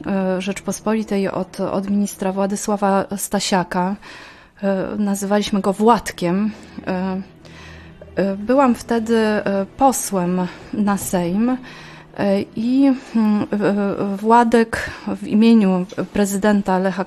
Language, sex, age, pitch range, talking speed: Polish, female, 30-49, 190-215 Hz, 70 wpm